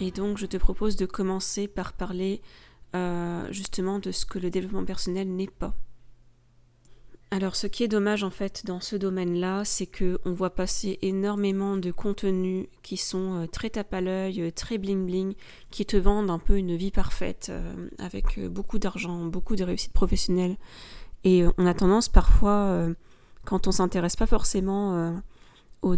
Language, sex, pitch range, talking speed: French, female, 175-195 Hz, 175 wpm